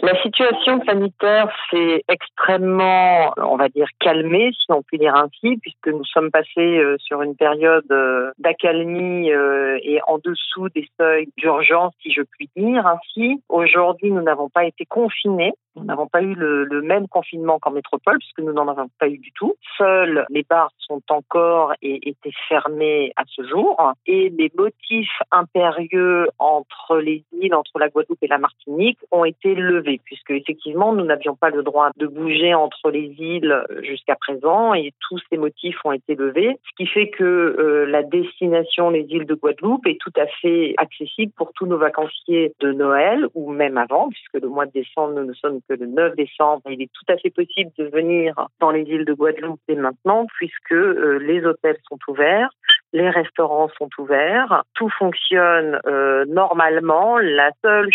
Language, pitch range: French, 150-180 Hz